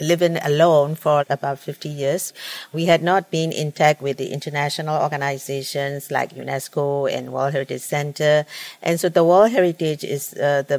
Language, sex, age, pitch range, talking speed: English, female, 50-69, 140-160 Hz, 160 wpm